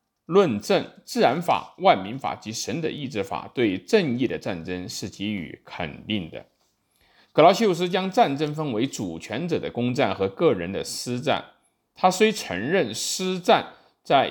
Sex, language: male, Chinese